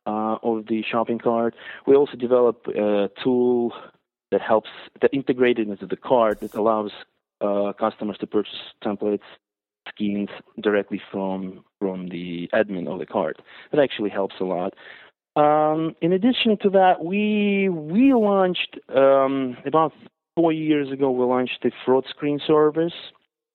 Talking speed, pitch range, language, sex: 145 wpm, 105-150 Hz, English, male